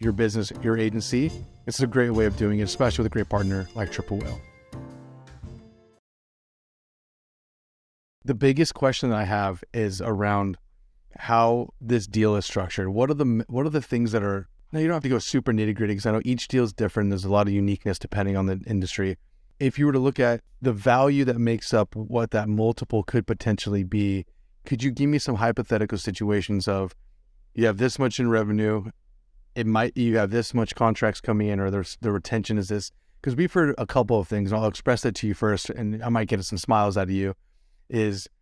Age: 30-49